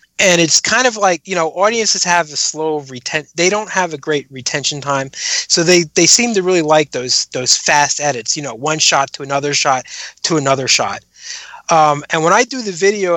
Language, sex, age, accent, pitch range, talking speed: English, male, 20-39, American, 140-175 Hz, 210 wpm